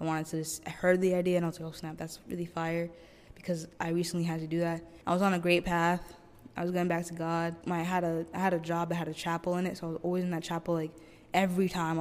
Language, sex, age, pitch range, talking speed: English, female, 10-29, 160-180 Hz, 275 wpm